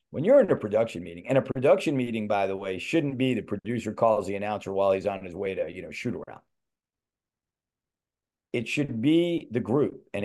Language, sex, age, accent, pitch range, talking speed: English, male, 40-59, American, 115-160 Hz, 200 wpm